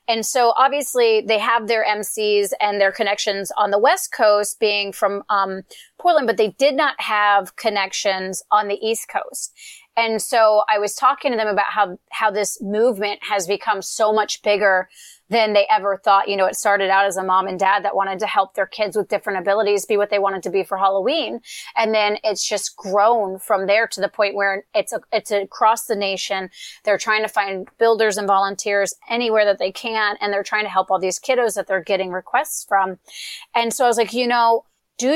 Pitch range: 195-220 Hz